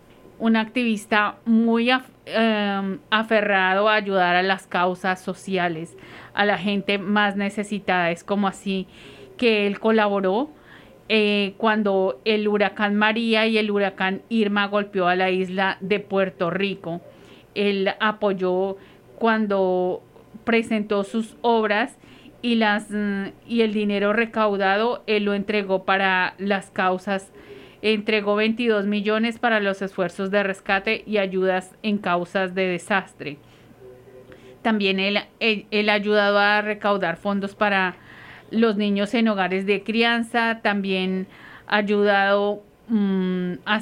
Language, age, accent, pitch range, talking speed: English, 40-59, Colombian, 190-215 Hz, 120 wpm